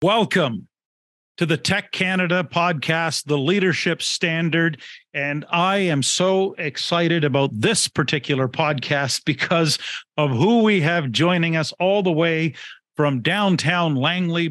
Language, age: English, 50-69